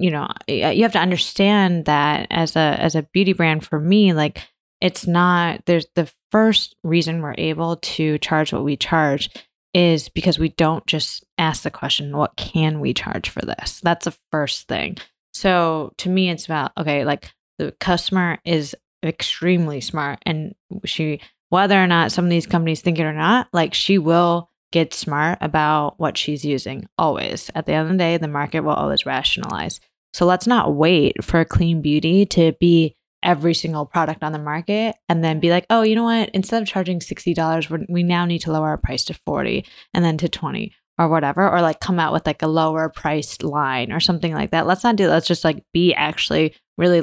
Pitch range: 155-180 Hz